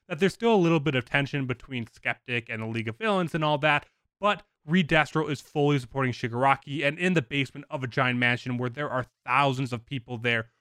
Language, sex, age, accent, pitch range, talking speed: English, male, 20-39, American, 115-155 Hz, 225 wpm